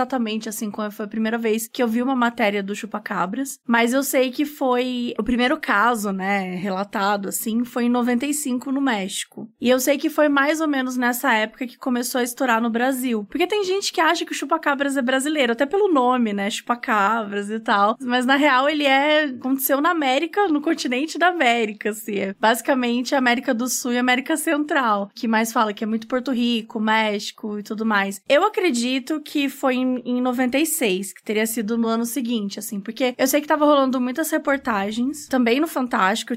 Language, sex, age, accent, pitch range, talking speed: Portuguese, female, 20-39, Brazilian, 225-285 Hz, 195 wpm